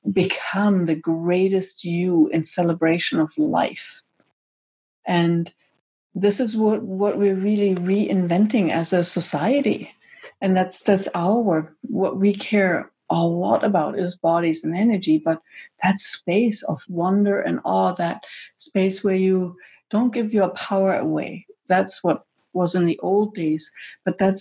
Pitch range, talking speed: 170-205 Hz, 145 wpm